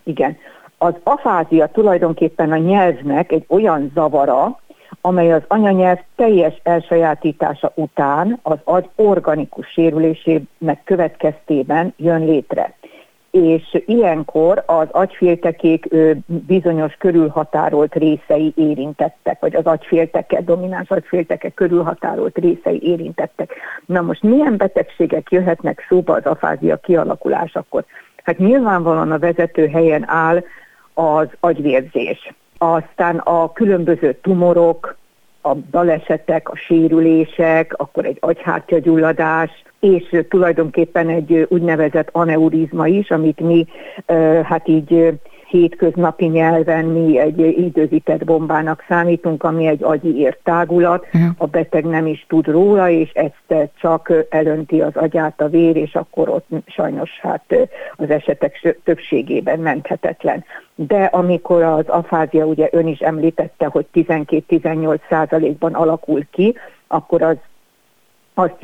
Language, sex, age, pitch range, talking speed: Hungarian, female, 50-69, 160-175 Hz, 110 wpm